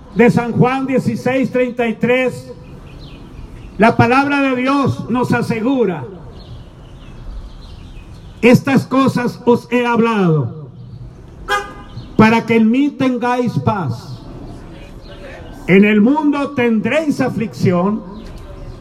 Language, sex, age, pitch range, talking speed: Spanish, male, 50-69, 160-250 Hz, 85 wpm